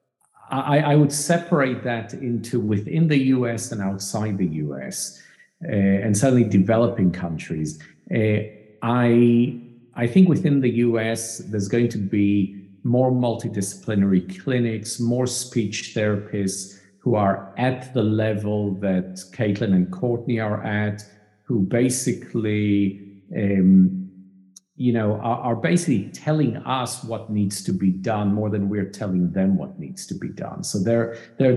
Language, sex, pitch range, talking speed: English, male, 95-120 Hz, 140 wpm